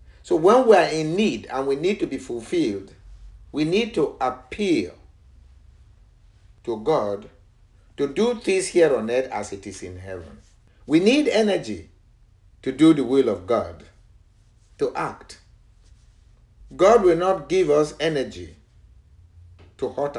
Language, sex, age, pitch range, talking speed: English, male, 50-69, 90-140 Hz, 145 wpm